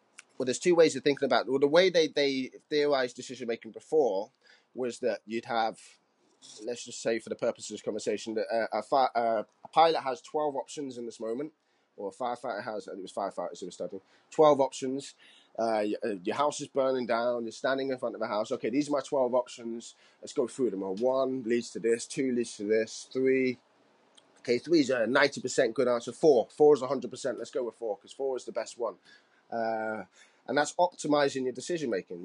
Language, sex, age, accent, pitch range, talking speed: English, male, 20-39, British, 115-150 Hz, 210 wpm